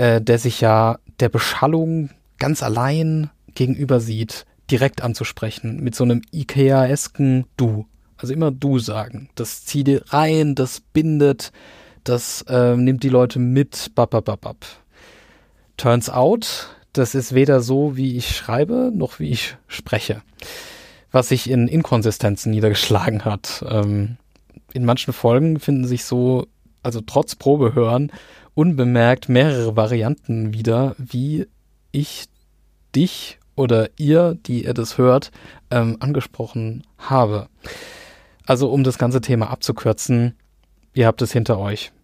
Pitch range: 110-135 Hz